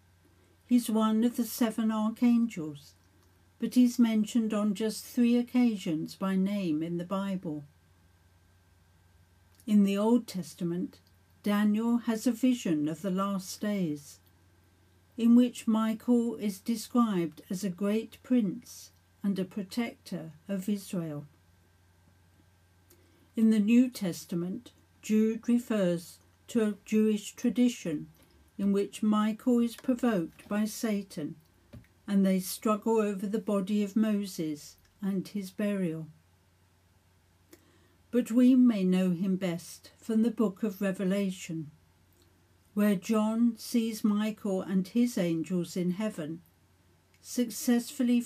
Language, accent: English, British